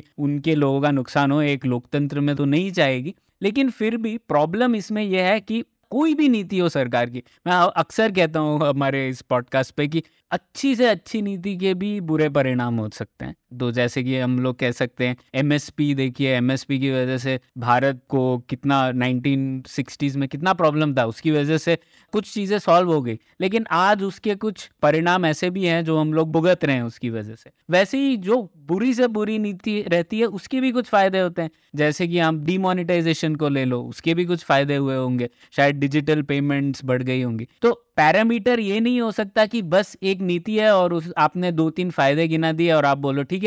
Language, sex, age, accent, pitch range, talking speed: Hindi, male, 20-39, native, 135-195 Hz, 205 wpm